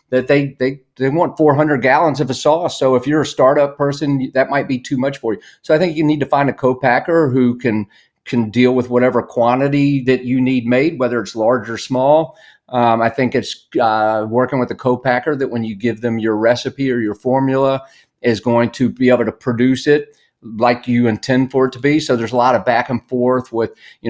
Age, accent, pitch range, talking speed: 40-59, American, 120-135 Hz, 225 wpm